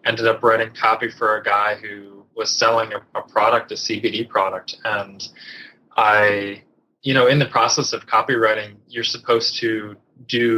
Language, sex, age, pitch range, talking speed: English, male, 20-39, 105-120 Hz, 165 wpm